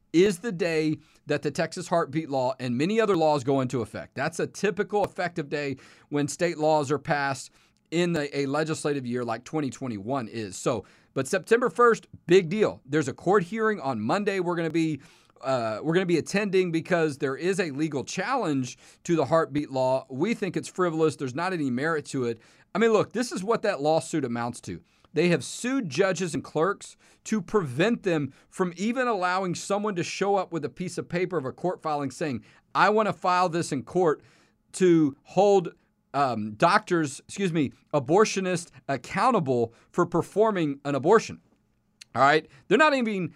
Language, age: English, 40-59